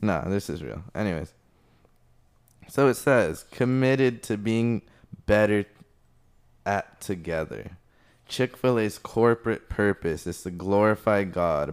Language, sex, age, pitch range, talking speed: English, male, 20-39, 90-110 Hz, 105 wpm